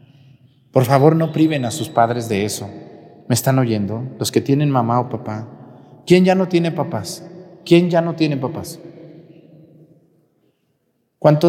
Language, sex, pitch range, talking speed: Spanish, male, 130-180 Hz, 150 wpm